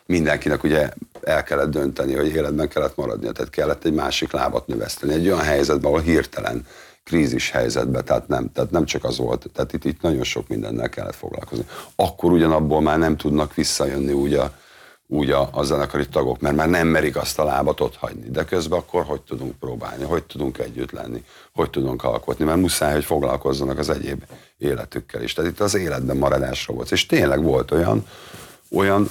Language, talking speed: Hungarian, 185 wpm